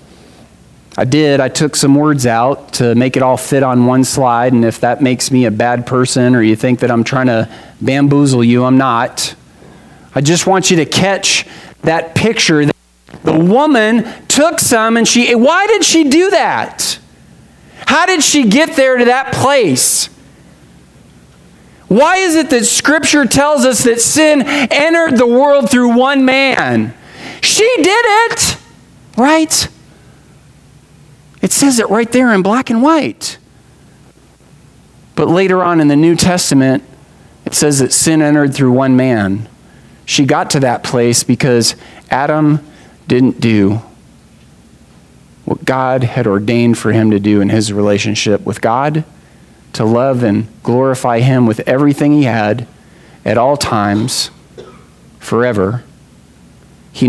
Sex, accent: male, American